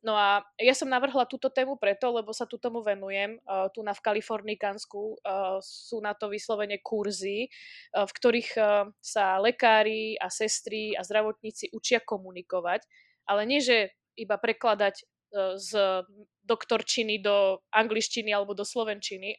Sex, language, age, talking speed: female, Slovak, 20-39, 150 wpm